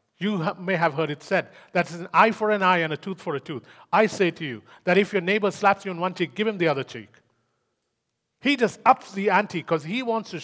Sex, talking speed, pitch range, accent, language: male, 265 wpm, 165-225 Hz, Indian, English